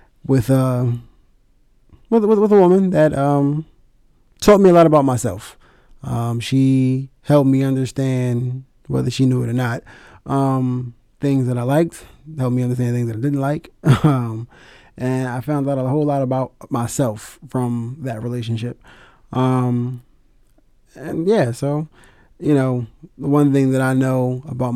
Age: 20-39